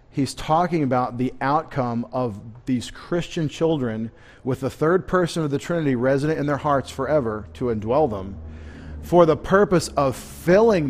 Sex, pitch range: male, 115-145 Hz